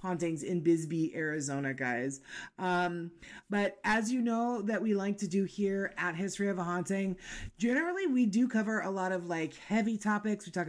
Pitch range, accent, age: 165-210 Hz, American, 30-49